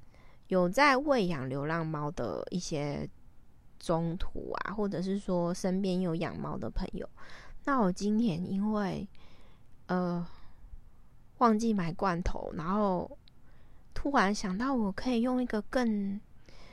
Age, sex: 20-39, female